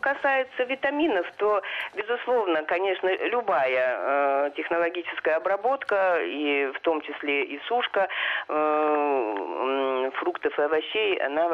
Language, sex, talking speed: Russian, female, 110 wpm